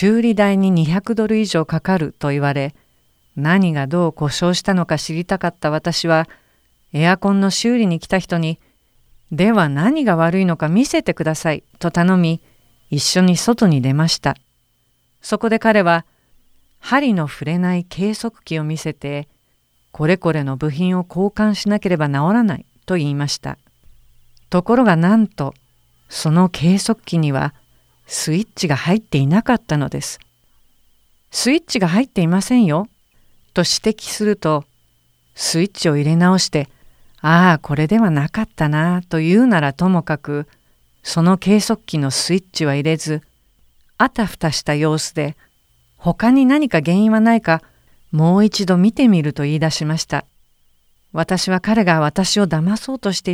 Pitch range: 150-195 Hz